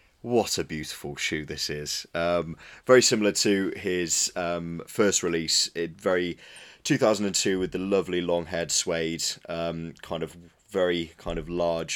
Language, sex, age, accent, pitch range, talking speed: English, male, 20-39, British, 80-85 Hz, 150 wpm